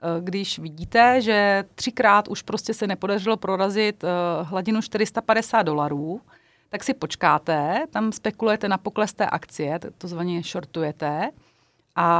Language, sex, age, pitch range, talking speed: Czech, female, 30-49, 180-220 Hz, 125 wpm